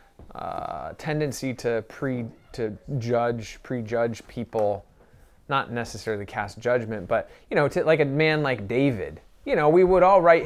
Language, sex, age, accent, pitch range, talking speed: English, male, 20-39, American, 110-155 Hz, 155 wpm